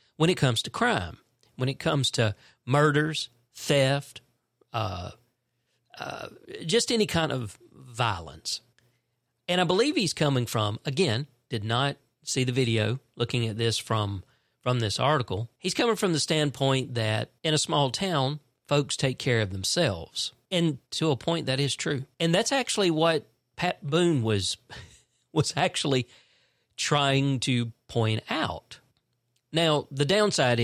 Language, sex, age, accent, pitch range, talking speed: English, male, 40-59, American, 115-140 Hz, 145 wpm